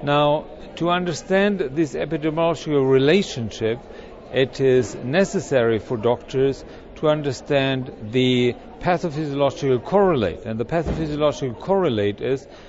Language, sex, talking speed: English, male, 100 wpm